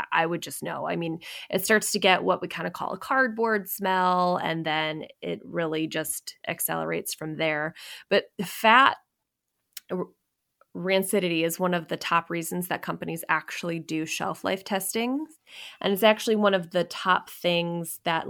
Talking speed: 165 wpm